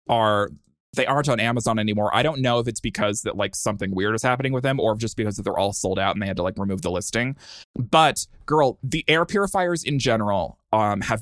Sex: male